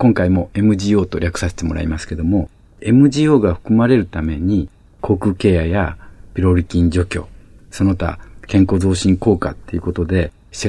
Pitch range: 90-120 Hz